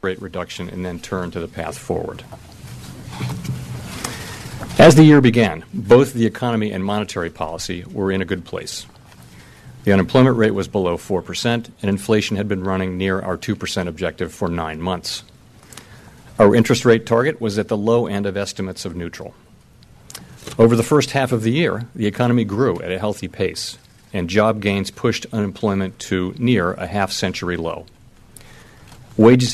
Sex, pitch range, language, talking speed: male, 95-115 Hz, English, 165 wpm